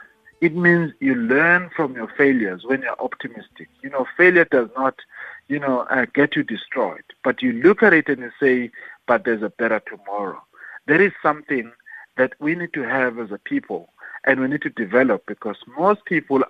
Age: 50-69